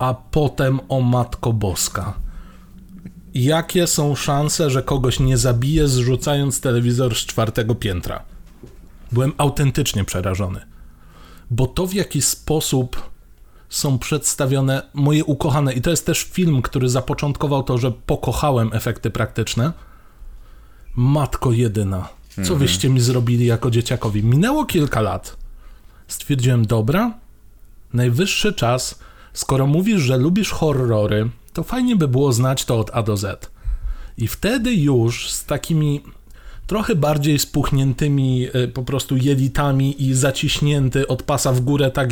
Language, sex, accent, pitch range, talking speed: Polish, male, native, 120-150 Hz, 125 wpm